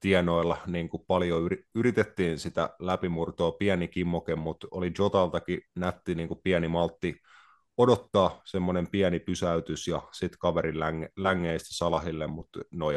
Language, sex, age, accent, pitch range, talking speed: Finnish, male, 30-49, native, 80-90 Hz, 125 wpm